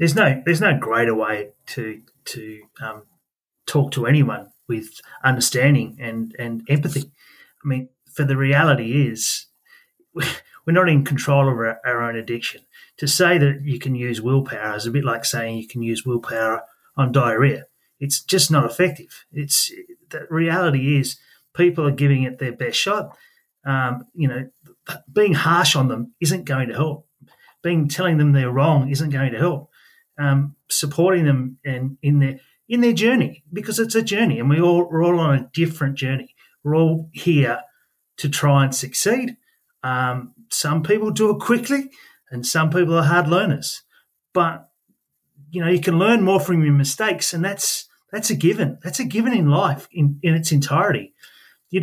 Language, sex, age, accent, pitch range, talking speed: English, male, 30-49, Australian, 130-175 Hz, 175 wpm